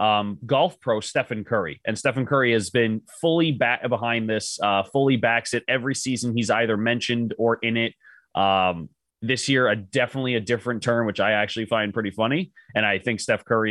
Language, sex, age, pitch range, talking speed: English, male, 30-49, 105-130 Hz, 195 wpm